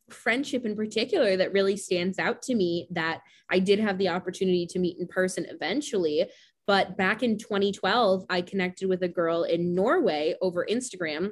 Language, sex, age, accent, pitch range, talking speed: English, female, 20-39, American, 185-245 Hz, 175 wpm